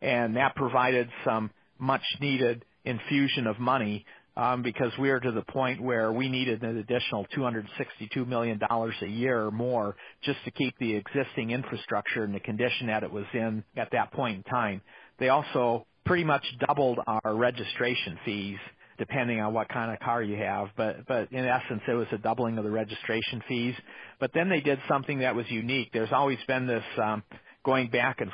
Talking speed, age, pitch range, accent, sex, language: 185 wpm, 40-59, 110-130 Hz, American, male, English